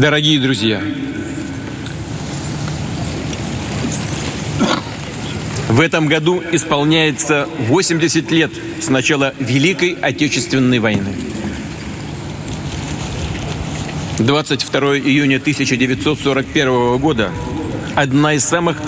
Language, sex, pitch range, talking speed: Russian, male, 135-165 Hz, 65 wpm